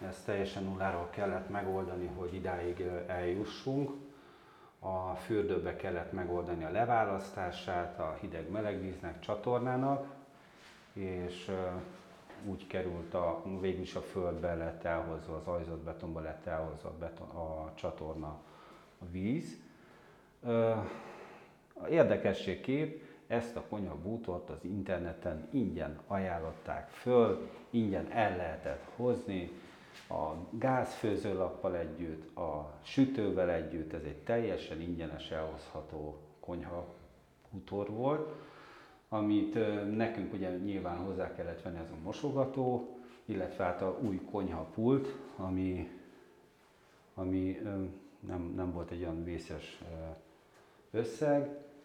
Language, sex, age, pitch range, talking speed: Hungarian, male, 40-59, 85-105 Hz, 100 wpm